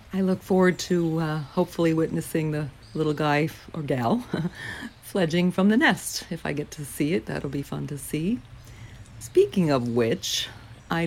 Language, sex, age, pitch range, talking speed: English, female, 40-59, 130-160 Hz, 170 wpm